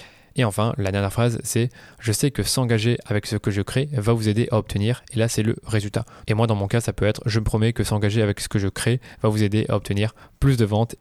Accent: French